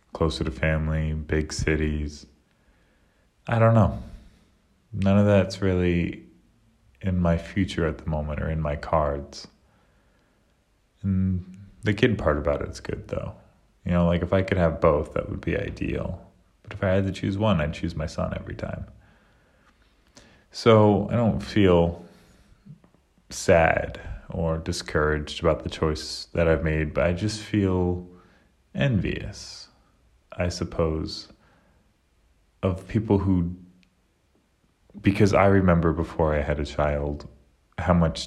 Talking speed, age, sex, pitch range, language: 140 wpm, 30-49, male, 75-95 Hz, English